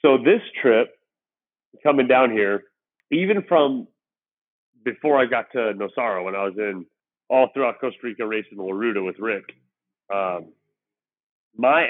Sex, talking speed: male, 140 wpm